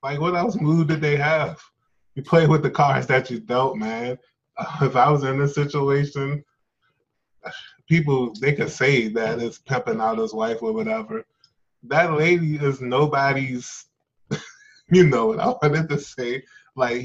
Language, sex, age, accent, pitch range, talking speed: English, male, 20-39, American, 120-160 Hz, 165 wpm